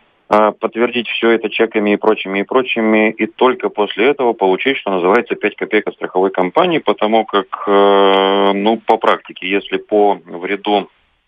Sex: male